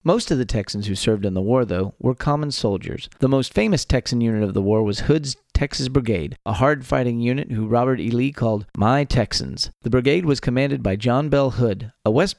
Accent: American